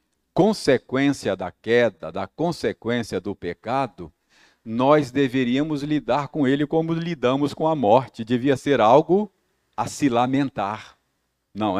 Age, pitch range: 50-69, 120-180 Hz